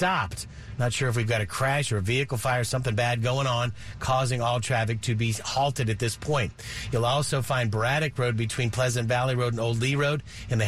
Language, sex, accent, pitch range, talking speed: English, male, American, 115-135 Hz, 230 wpm